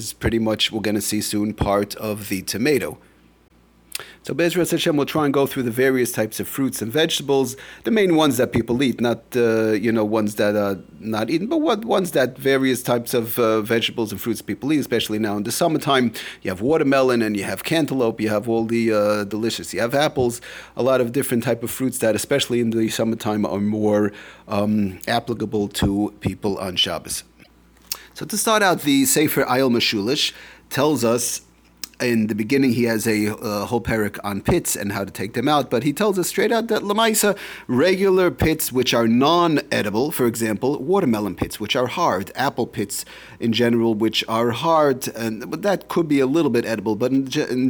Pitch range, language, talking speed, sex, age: 105-140 Hz, English, 205 wpm, male, 30-49